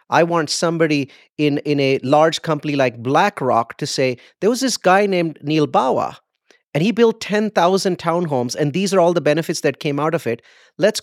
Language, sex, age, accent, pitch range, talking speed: English, male, 30-49, Indian, 135-175 Hz, 195 wpm